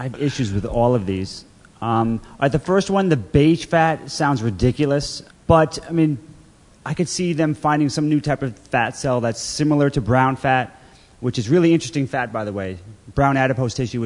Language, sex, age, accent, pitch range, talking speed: English, male, 30-49, American, 120-150 Hz, 205 wpm